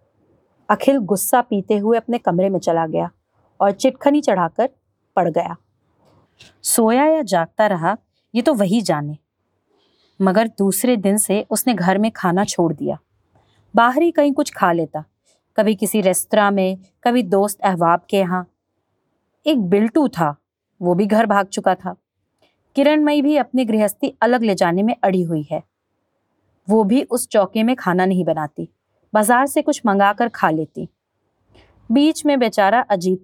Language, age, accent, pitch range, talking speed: Hindi, 30-49, native, 175-245 Hz, 155 wpm